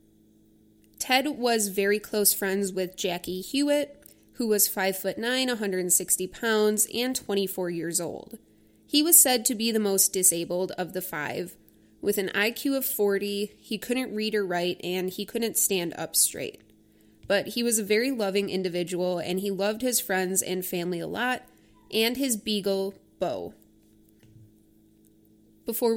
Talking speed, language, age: 150 wpm, English, 20-39